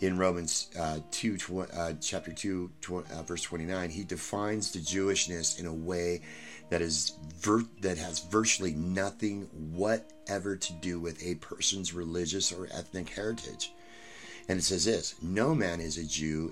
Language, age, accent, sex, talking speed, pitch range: English, 30-49, American, male, 165 wpm, 80-95 Hz